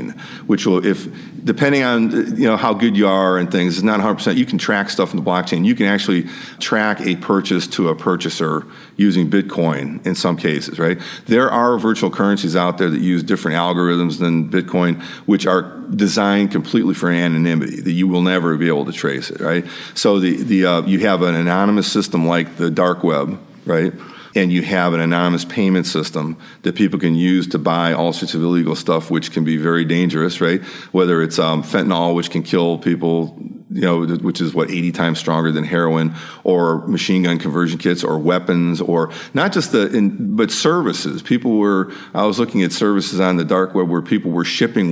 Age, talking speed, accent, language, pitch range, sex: 40-59, 205 wpm, American, English, 85-95 Hz, male